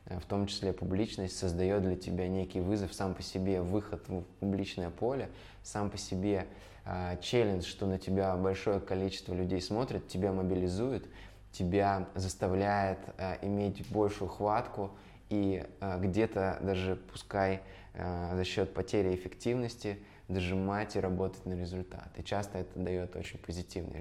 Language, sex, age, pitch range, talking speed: Russian, male, 20-39, 90-100 Hz, 140 wpm